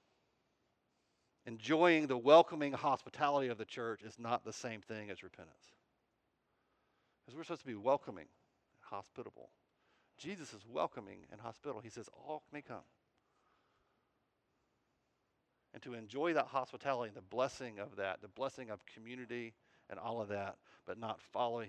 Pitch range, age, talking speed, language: 125-180 Hz, 50-69, 145 wpm, English